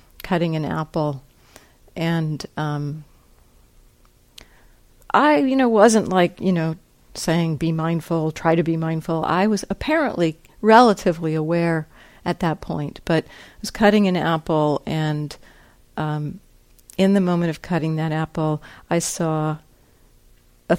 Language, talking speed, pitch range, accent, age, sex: English, 130 wpm, 150-180 Hz, American, 50-69, female